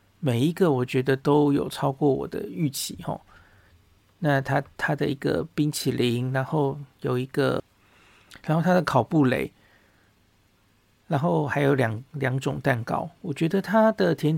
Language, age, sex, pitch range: Chinese, 50-69, male, 115-155 Hz